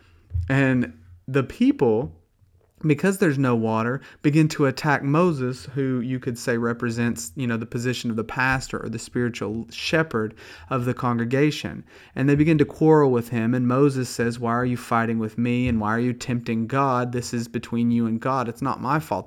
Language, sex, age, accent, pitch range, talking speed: English, male, 30-49, American, 115-135 Hz, 195 wpm